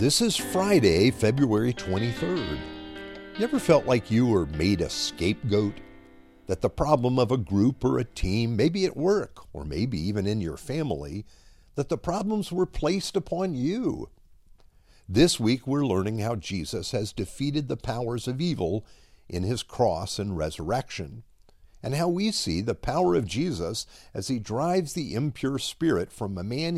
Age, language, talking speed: 50-69, English, 160 wpm